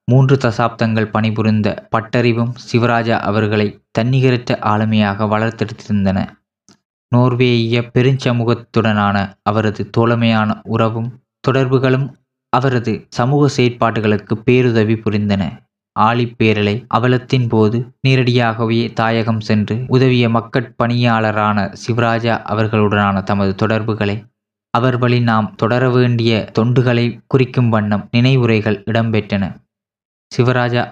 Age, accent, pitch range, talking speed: 20-39, native, 110-120 Hz, 80 wpm